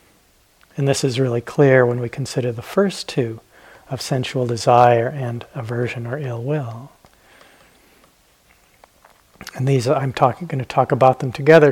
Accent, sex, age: American, male, 40-59